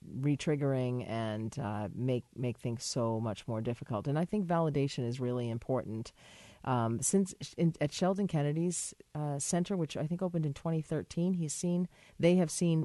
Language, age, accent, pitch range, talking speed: English, 40-59, American, 125-170 Hz, 170 wpm